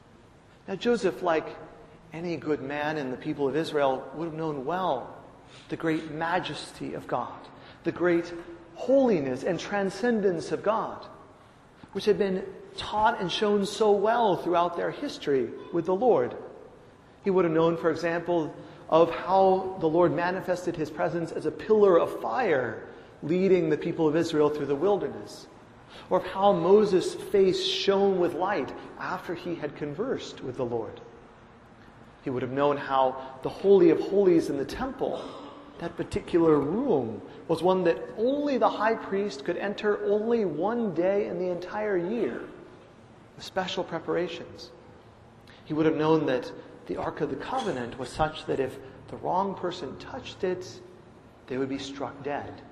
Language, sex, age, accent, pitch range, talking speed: English, male, 40-59, American, 145-195 Hz, 160 wpm